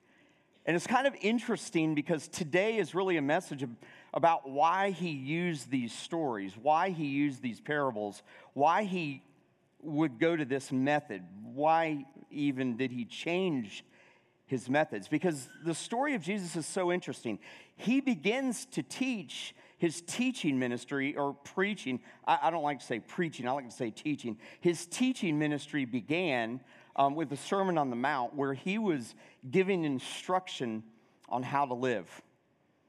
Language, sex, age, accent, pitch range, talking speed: English, male, 40-59, American, 130-175 Hz, 155 wpm